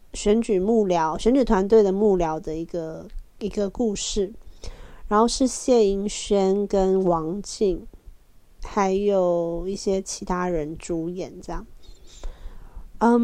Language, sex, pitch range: Chinese, female, 185-230 Hz